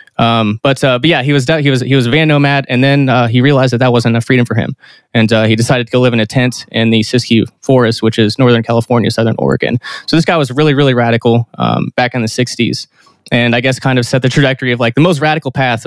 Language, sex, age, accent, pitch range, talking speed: English, male, 20-39, American, 115-135 Hz, 275 wpm